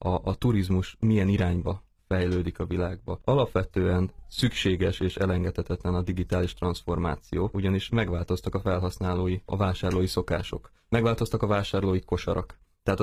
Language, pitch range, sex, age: Hungarian, 90-100 Hz, male, 20-39